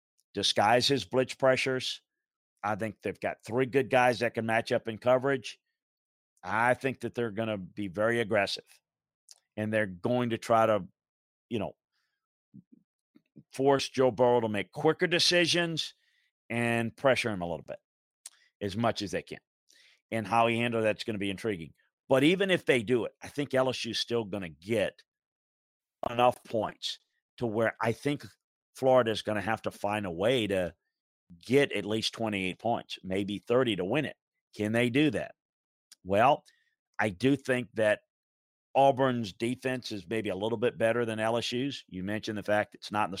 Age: 50-69